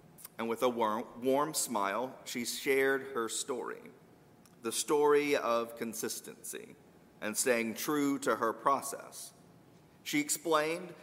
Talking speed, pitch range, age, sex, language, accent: 115 wpm, 120-155 Hz, 40-59, male, English, American